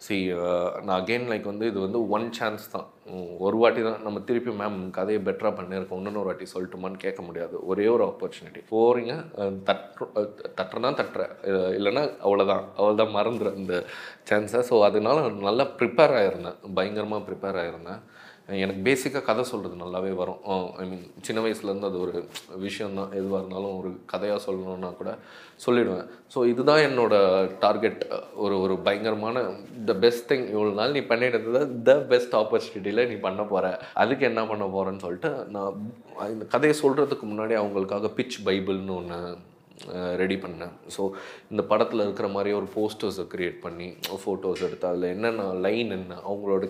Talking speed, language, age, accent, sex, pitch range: 155 wpm, Tamil, 20-39, native, male, 95-115 Hz